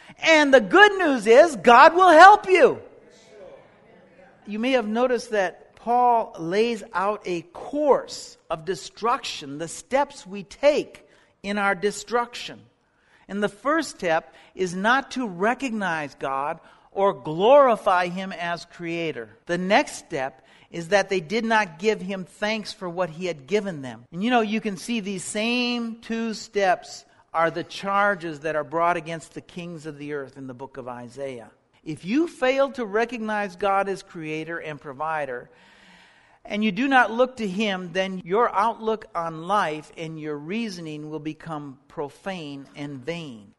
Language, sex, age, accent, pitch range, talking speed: English, male, 50-69, American, 170-245 Hz, 160 wpm